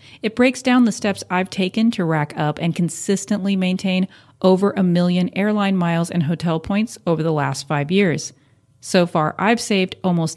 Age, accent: 30-49, American